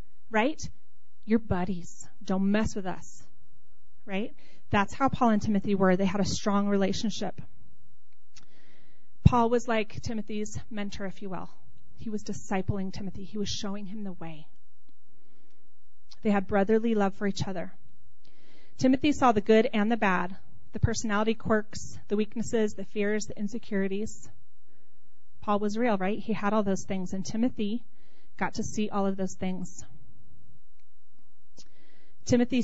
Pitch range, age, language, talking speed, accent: 185-220 Hz, 30-49, English, 145 wpm, American